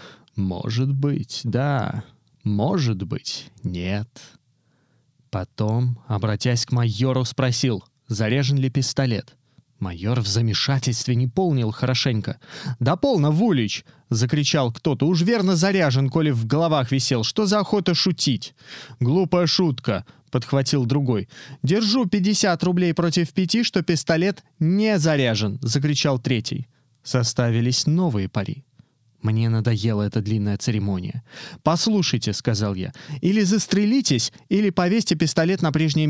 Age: 20-39